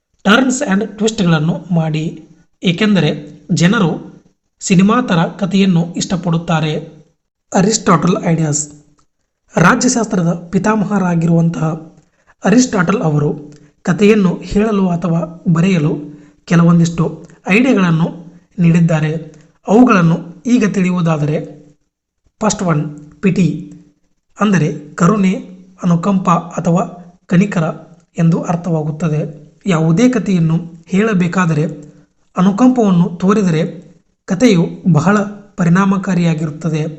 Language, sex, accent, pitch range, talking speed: Kannada, male, native, 160-195 Hz, 70 wpm